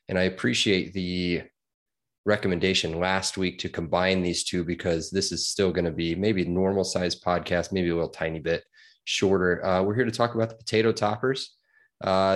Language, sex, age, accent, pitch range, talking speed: English, male, 20-39, American, 90-115 Hz, 185 wpm